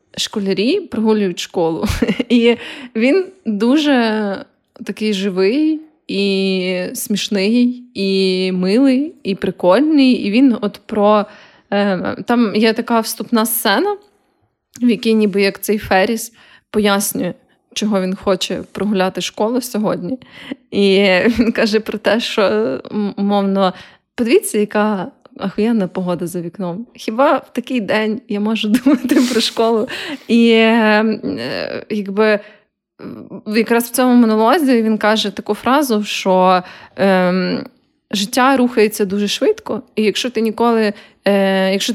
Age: 20-39